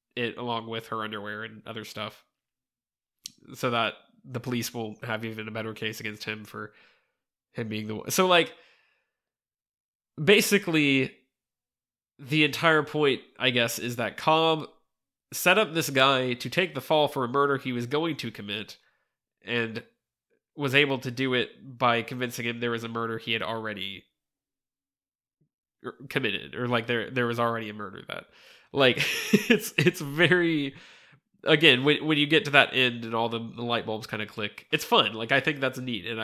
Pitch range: 110-140 Hz